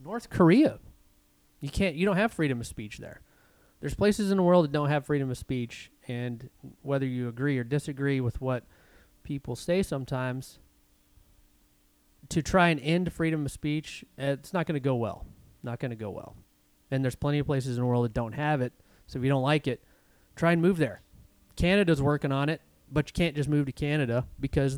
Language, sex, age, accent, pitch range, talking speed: English, male, 30-49, American, 120-150 Hz, 205 wpm